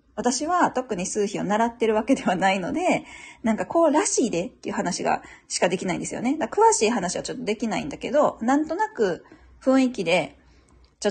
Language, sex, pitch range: Japanese, female, 205-285 Hz